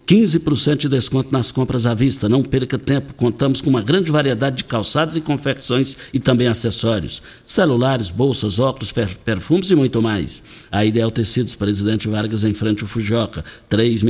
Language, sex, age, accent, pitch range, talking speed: Portuguese, male, 60-79, Brazilian, 110-160 Hz, 160 wpm